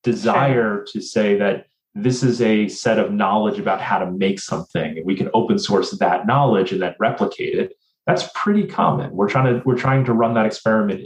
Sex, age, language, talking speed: male, 30-49, English, 205 wpm